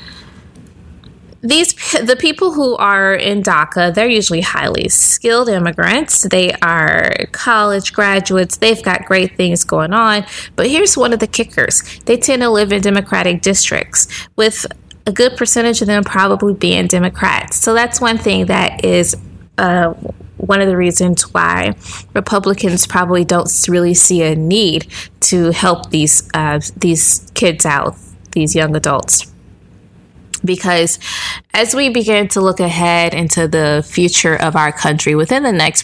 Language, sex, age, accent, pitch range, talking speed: English, female, 20-39, American, 155-200 Hz, 150 wpm